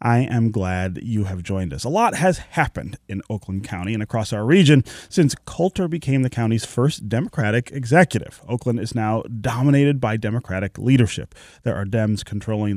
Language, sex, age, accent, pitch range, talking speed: English, male, 30-49, American, 105-140 Hz, 175 wpm